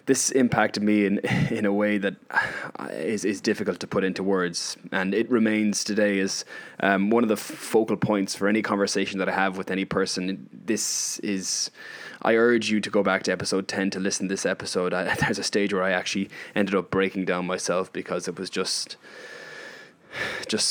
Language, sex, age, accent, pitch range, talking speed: English, male, 20-39, Irish, 95-110 Hz, 200 wpm